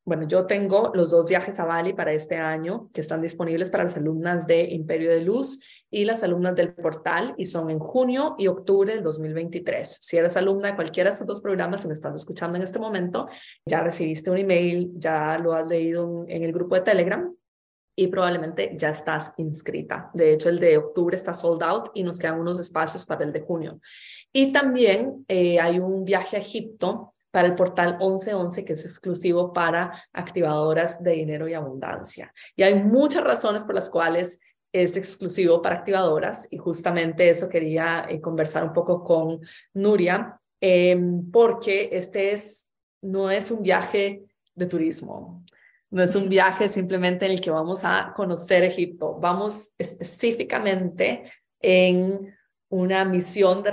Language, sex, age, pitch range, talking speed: Spanish, female, 20-39, 170-195 Hz, 175 wpm